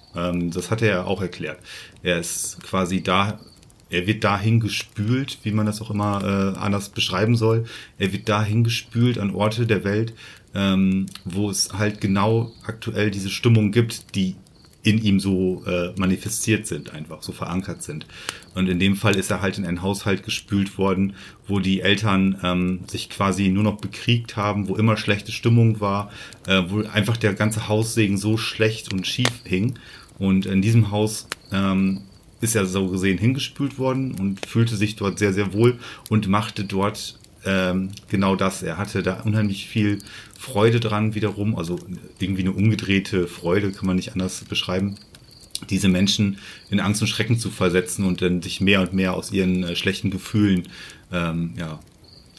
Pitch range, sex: 95-110 Hz, male